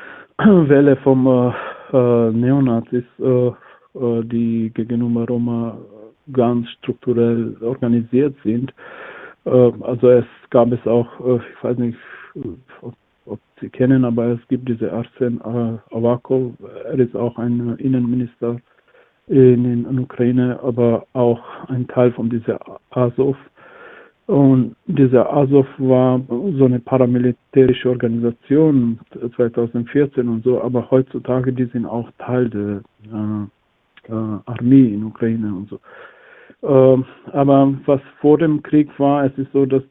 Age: 50-69